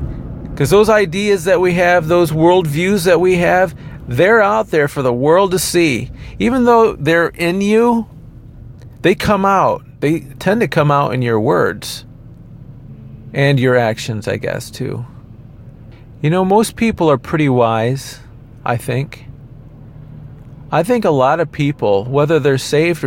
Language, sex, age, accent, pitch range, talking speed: English, male, 40-59, American, 120-155 Hz, 155 wpm